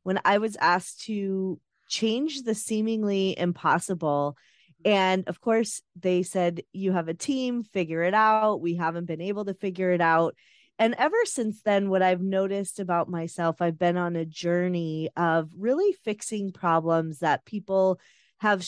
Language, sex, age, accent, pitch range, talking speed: English, female, 20-39, American, 175-220 Hz, 160 wpm